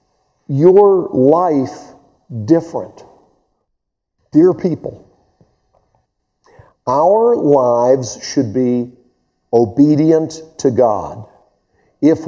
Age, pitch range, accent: 50-69, 125-170 Hz, American